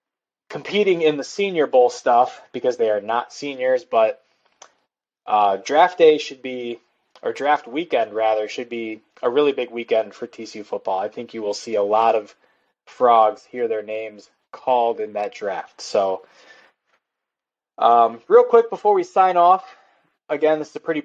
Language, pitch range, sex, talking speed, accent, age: English, 120-160 Hz, male, 170 wpm, American, 20-39